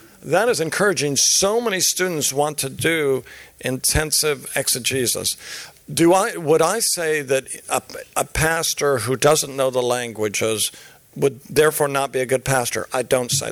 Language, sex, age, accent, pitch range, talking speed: English, male, 50-69, American, 130-165 Hz, 155 wpm